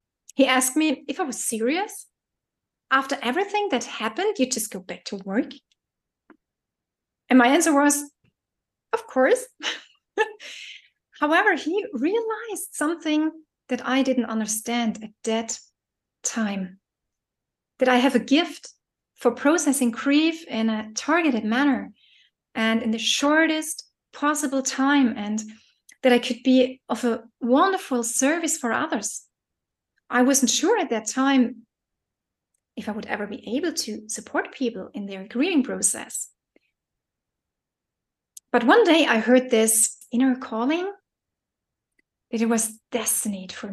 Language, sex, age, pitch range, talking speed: English, female, 30-49, 225-295 Hz, 130 wpm